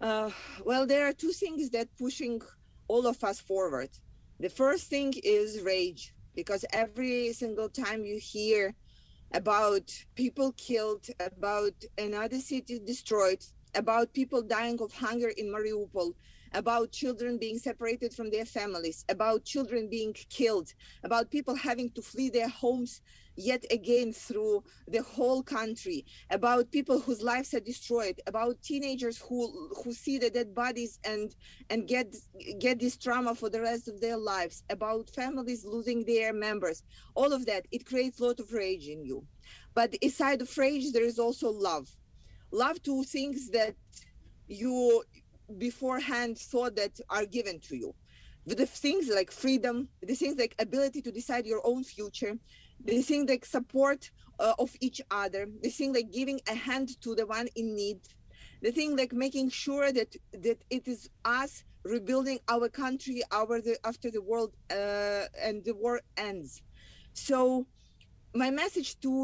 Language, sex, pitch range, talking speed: English, female, 215-255 Hz, 160 wpm